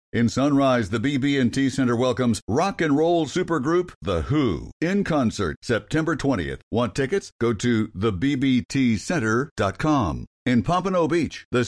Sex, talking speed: male, 130 wpm